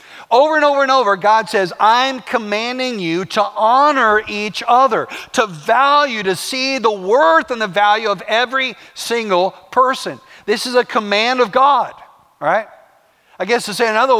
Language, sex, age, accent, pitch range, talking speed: English, male, 50-69, American, 160-230 Hz, 165 wpm